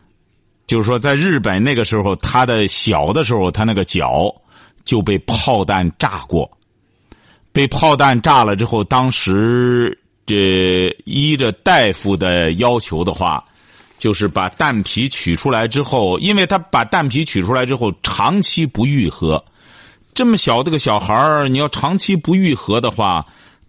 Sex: male